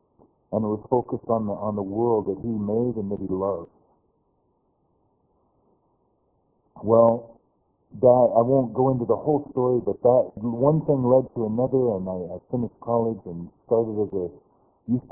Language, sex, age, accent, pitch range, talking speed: English, male, 60-79, American, 105-125 Hz, 165 wpm